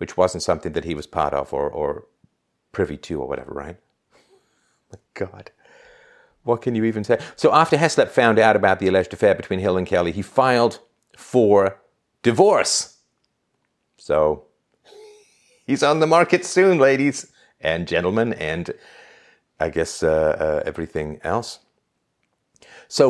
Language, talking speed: English, 145 wpm